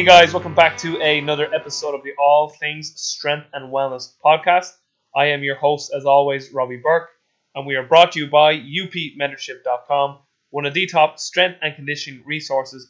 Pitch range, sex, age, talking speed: 135-165 Hz, male, 20-39, 180 wpm